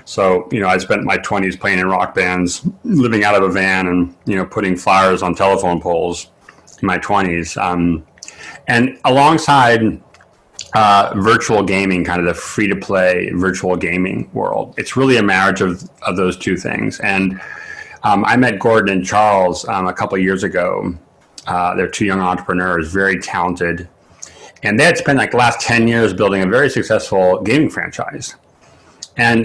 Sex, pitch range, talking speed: male, 90-110 Hz, 175 wpm